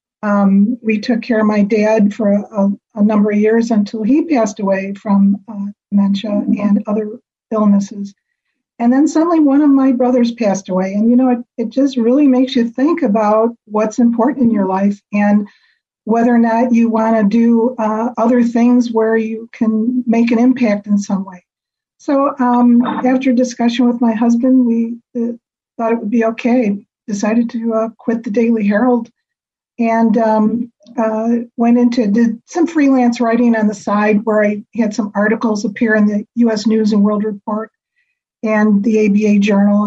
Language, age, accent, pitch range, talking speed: English, 50-69, American, 210-245 Hz, 180 wpm